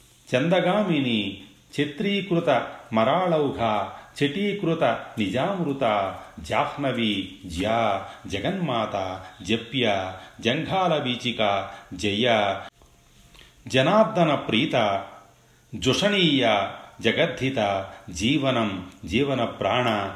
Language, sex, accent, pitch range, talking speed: Telugu, male, native, 100-145 Hz, 40 wpm